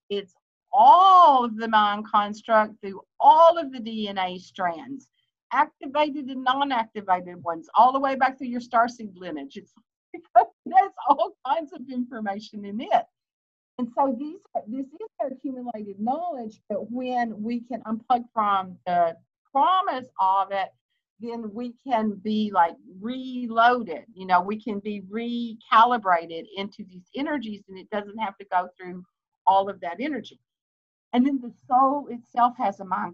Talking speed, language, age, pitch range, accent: 155 wpm, English, 50-69, 200-260 Hz, American